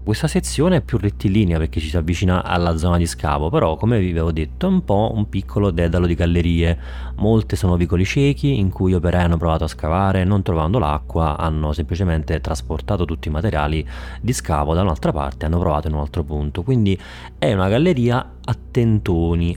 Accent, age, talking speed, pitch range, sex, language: native, 30-49, 195 wpm, 80-100 Hz, male, Italian